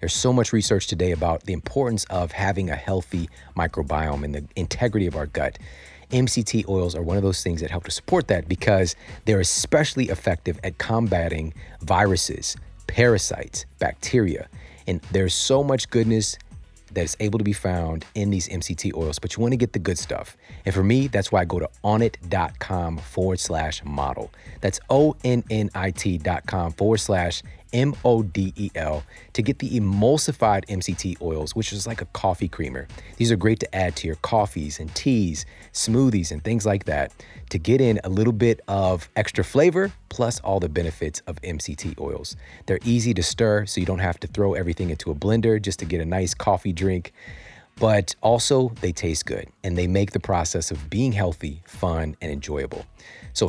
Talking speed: 180 wpm